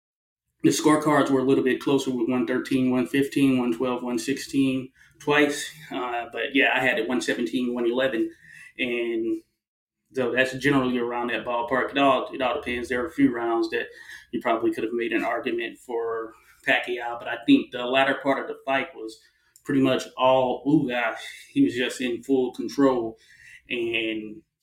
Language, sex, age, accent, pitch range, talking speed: English, male, 20-39, American, 120-165 Hz, 170 wpm